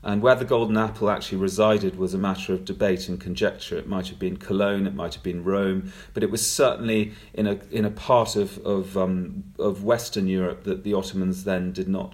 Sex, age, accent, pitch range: male, 40-59, British, 95-120 Hz